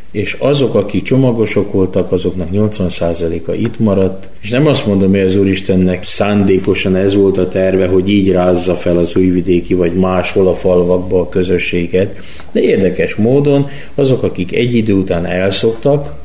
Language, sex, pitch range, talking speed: Hungarian, male, 90-110 Hz, 155 wpm